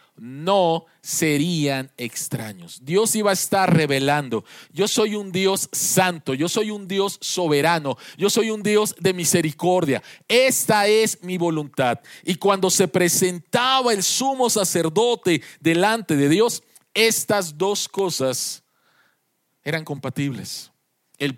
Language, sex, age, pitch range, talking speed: Spanish, male, 40-59, 150-190 Hz, 125 wpm